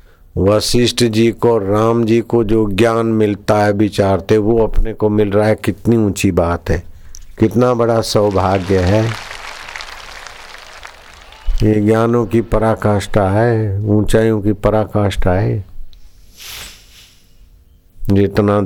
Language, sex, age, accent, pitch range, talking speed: Hindi, male, 60-79, native, 90-105 Hz, 115 wpm